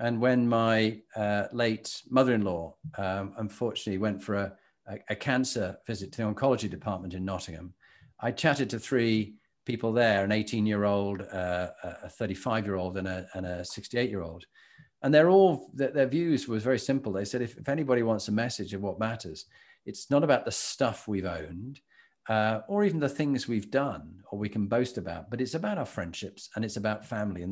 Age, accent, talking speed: 40-59, British, 190 wpm